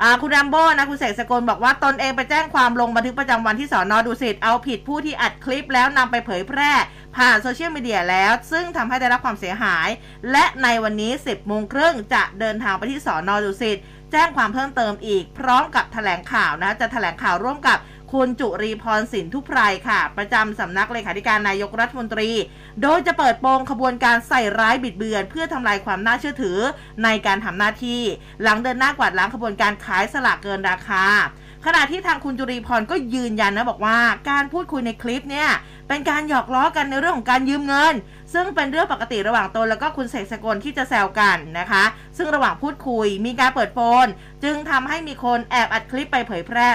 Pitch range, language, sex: 210-270 Hz, Thai, female